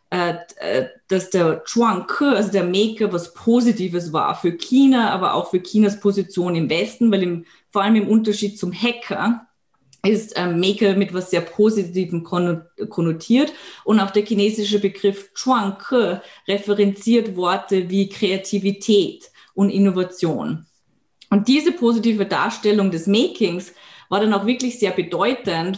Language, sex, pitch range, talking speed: German, female, 185-220 Hz, 135 wpm